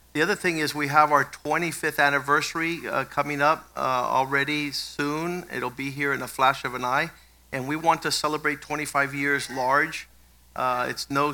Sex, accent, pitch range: male, American, 125-140 Hz